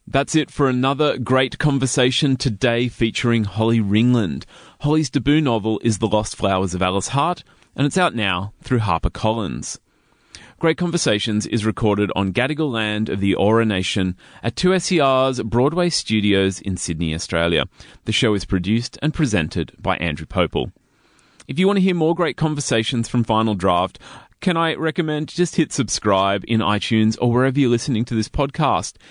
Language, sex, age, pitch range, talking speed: English, male, 30-49, 100-145 Hz, 165 wpm